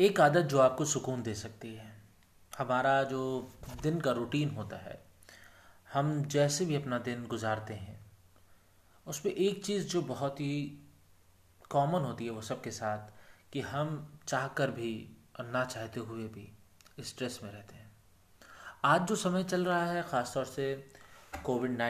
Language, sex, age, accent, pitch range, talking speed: Hindi, male, 30-49, native, 105-145 Hz, 155 wpm